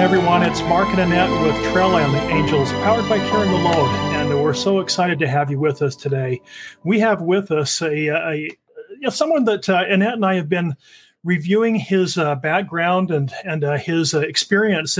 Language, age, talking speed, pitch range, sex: English, 40-59, 200 wpm, 165-210 Hz, male